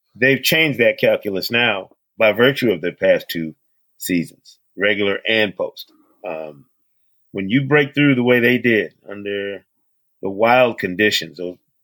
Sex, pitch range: male, 105-130 Hz